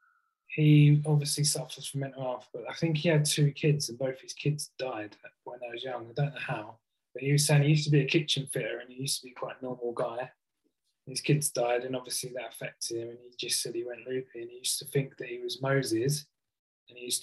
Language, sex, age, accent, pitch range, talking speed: English, male, 20-39, British, 115-145 Hz, 255 wpm